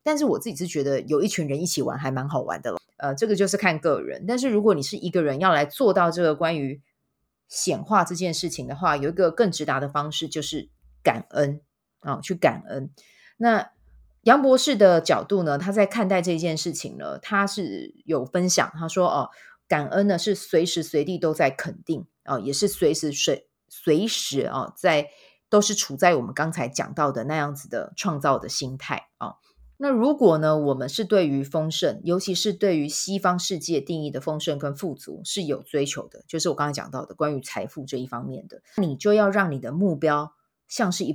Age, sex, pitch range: 30-49, female, 145-195 Hz